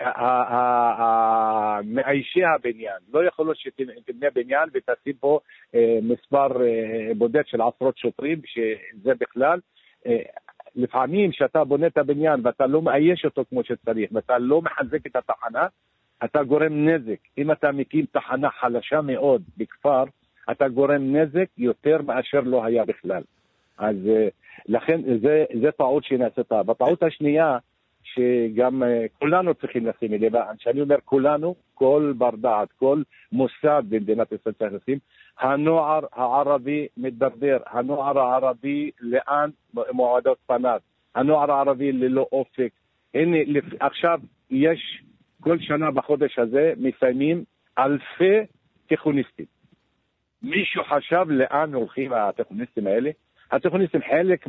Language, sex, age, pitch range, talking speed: Hebrew, male, 50-69, 120-150 Hz, 115 wpm